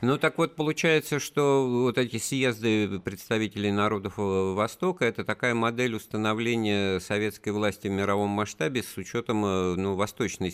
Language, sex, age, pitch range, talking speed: Russian, male, 50-69, 85-110 Hz, 140 wpm